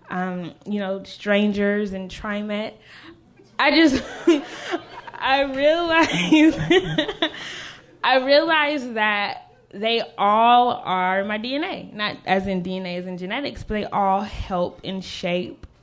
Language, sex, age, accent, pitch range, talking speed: English, female, 10-29, American, 185-235 Hz, 120 wpm